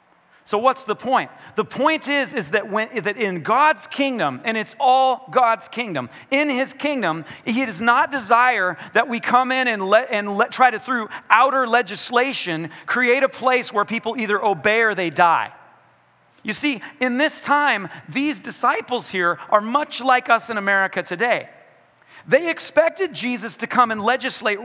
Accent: American